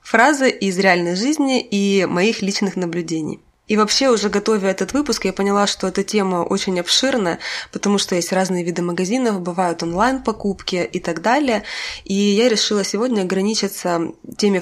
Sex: female